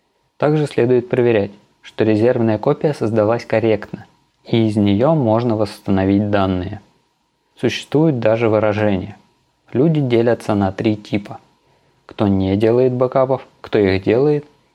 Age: 20-39